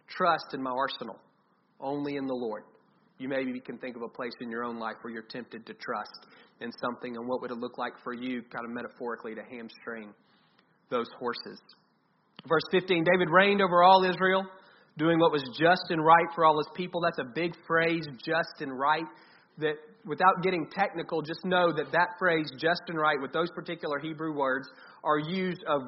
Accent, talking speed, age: American, 195 wpm, 40-59